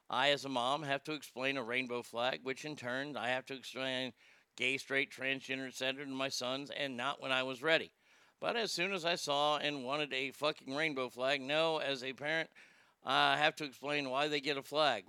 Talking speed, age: 225 wpm, 50-69